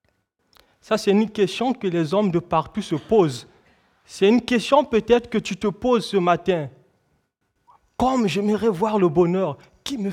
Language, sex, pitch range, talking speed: French, male, 165-220 Hz, 165 wpm